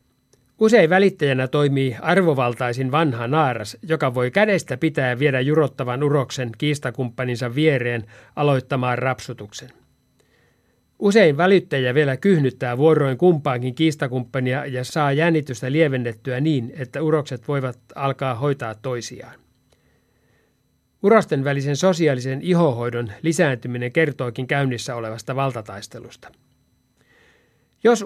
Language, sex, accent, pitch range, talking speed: Finnish, male, native, 125-160 Hz, 95 wpm